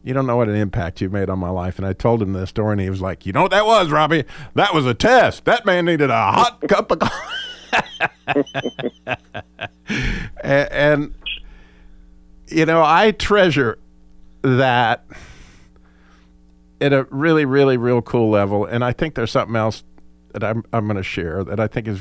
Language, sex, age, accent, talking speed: English, male, 50-69, American, 185 wpm